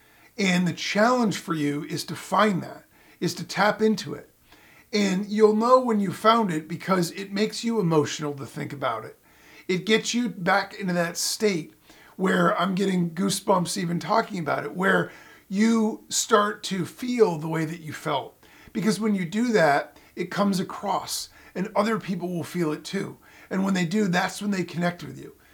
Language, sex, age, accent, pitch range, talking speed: English, male, 40-59, American, 165-210 Hz, 190 wpm